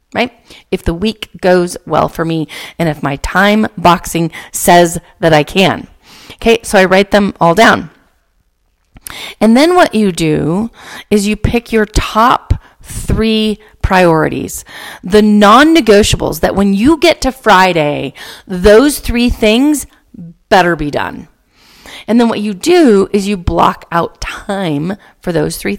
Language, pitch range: English, 185-245 Hz